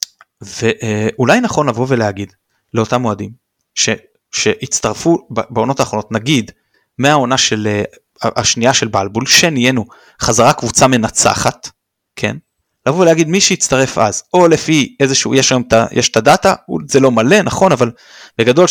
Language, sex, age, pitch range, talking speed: Hebrew, male, 20-39, 115-165 Hz, 130 wpm